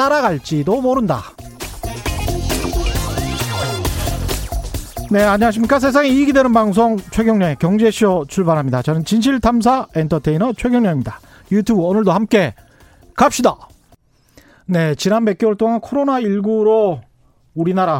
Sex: male